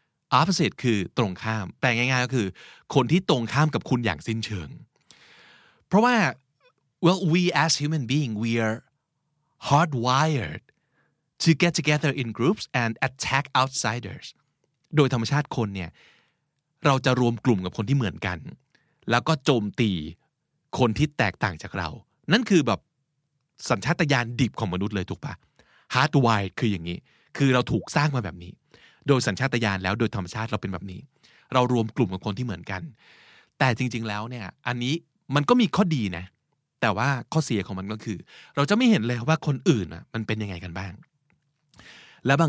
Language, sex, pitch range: Thai, male, 110-150 Hz